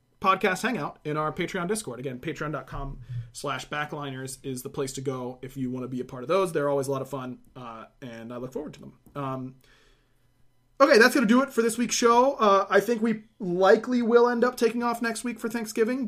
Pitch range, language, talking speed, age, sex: 135-190 Hz, English, 230 wpm, 30-49, male